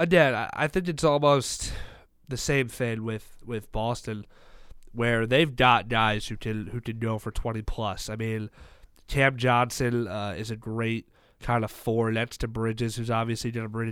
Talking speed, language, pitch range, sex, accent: 175 wpm, English, 110-130 Hz, male, American